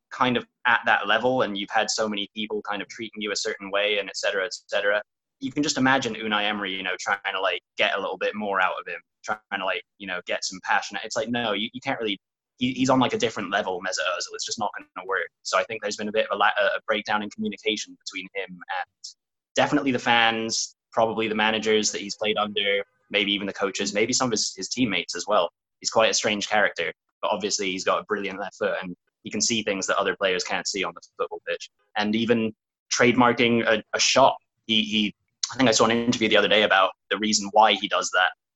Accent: British